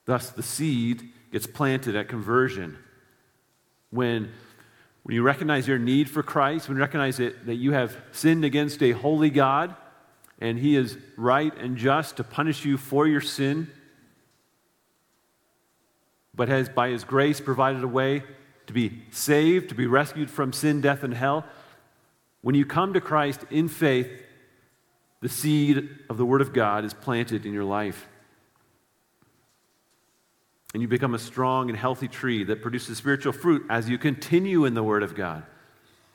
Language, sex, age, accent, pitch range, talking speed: English, male, 40-59, American, 115-140 Hz, 160 wpm